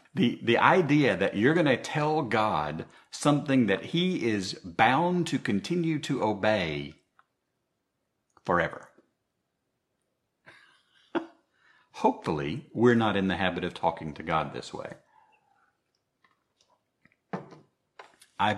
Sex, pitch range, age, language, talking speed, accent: male, 80-115 Hz, 50-69, English, 105 wpm, American